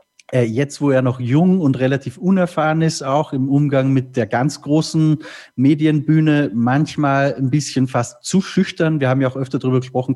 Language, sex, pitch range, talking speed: German, male, 120-150 Hz, 175 wpm